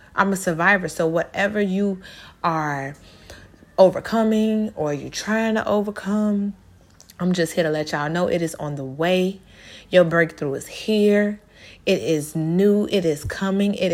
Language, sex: English, female